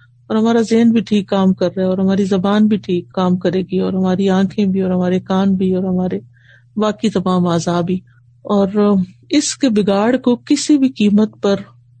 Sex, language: female, Urdu